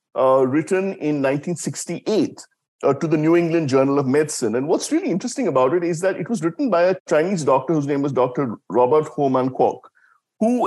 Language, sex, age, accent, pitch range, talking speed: English, male, 60-79, Indian, 130-180 Hz, 200 wpm